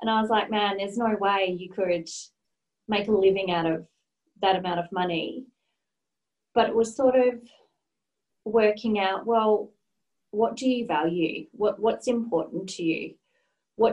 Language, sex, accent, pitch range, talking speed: English, female, Australian, 170-215 Hz, 155 wpm